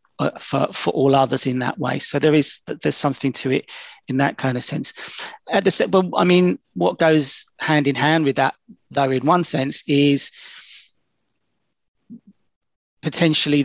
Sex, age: male, 40-59